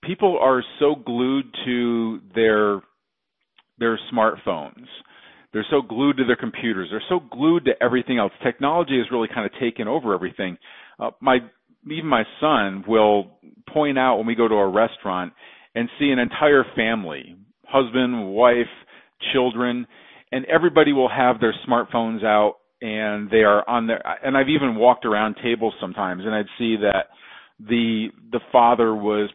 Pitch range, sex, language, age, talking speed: 105-130 Hz, male, English, 40-59, 155 wpm